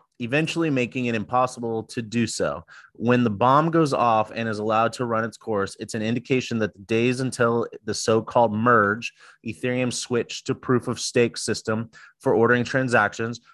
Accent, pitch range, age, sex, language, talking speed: American, 110-130 Hz, 30-49, male, English, 165 wpm